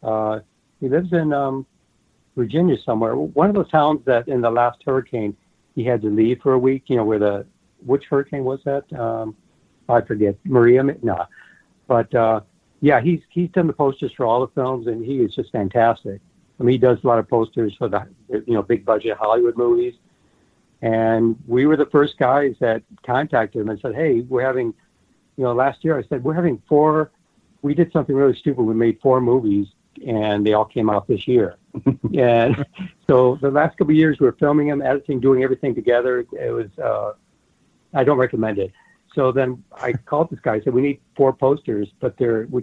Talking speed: 200 wpm